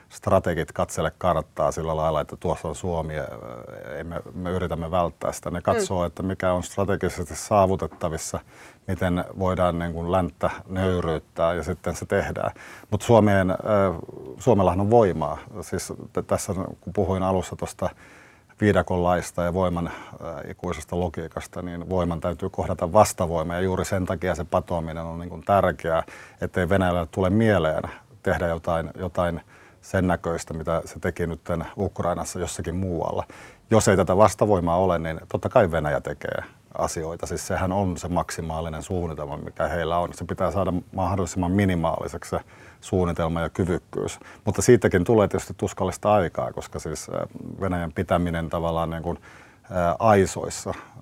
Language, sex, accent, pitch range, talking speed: Finnish, male, native, 85-95 Hz, 140 wpm